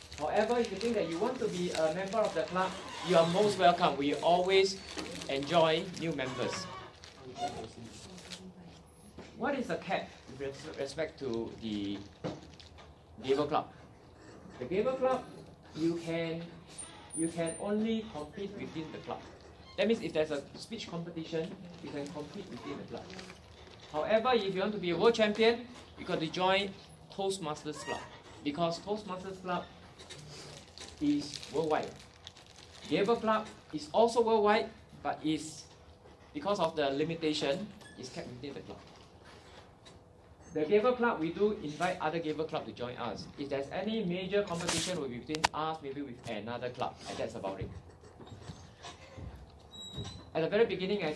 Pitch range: 120-190 Hz